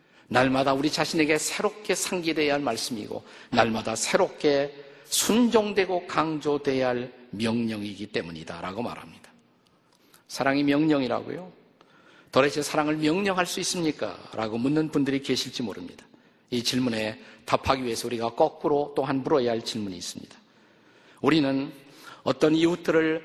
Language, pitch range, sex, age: Korean, 125-165 Hz, male, 50-69